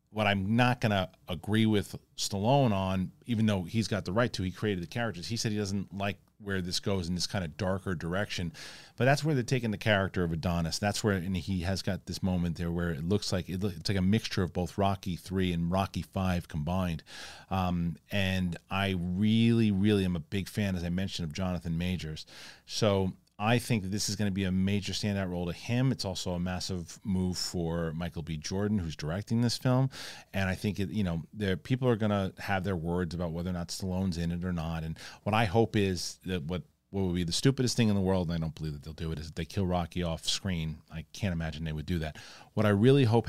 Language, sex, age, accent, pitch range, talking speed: English, male, 40-59, American, 85-105 Hz, 245 wpm